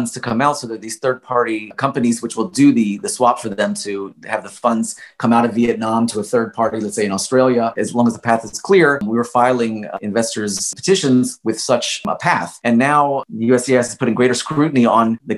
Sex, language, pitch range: male, English, 115-140 Hz